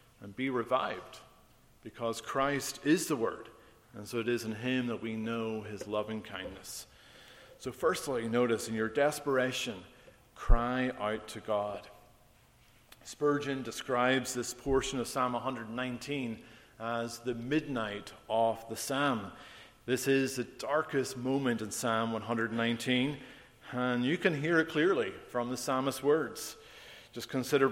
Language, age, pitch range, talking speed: English, 40-59, 115-140 Hz, 135 wpm